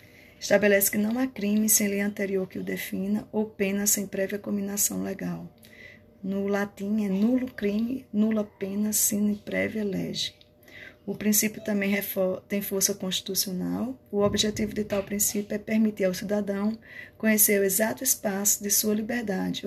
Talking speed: 150 wpm